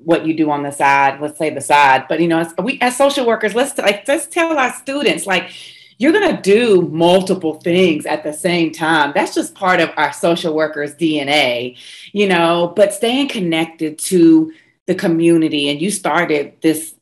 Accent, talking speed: American, 195 wpm